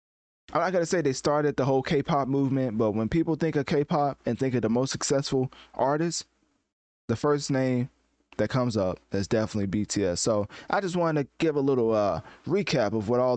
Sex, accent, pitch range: male, American, 110-140 Hz